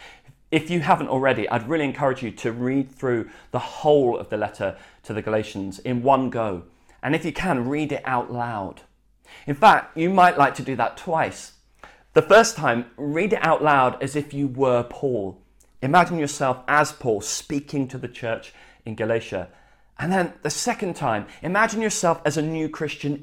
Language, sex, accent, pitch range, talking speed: English, male, British, 115-150 Hz, 185 wpm